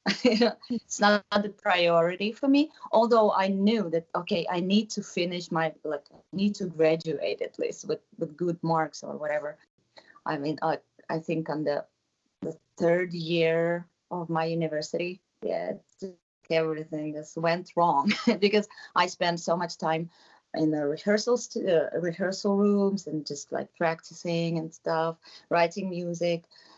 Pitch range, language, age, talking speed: 160-200 Hz, English, 30-49, 155 wpm